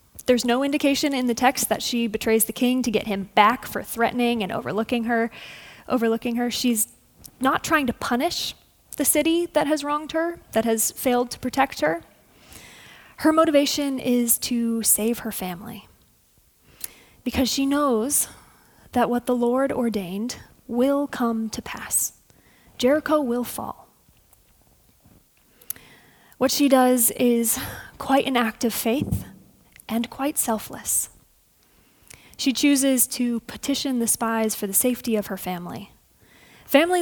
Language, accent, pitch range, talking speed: English, American, 225-270 Hz, 140 wpm